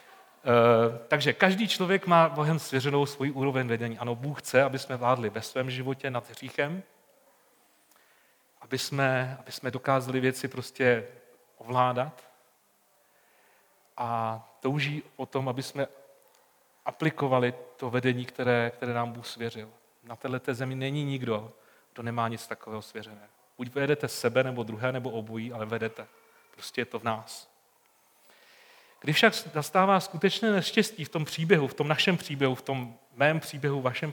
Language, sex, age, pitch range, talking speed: Czech, male, 40-59, 125-160 Hz, 145 wpm